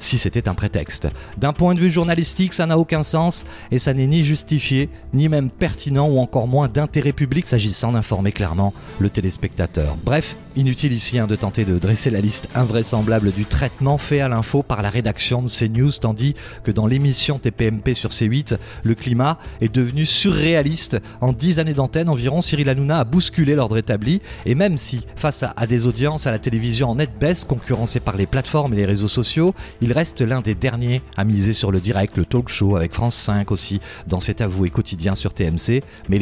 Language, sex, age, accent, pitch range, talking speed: French, male, 40-59, French, 110-145 Hz, 200 wpm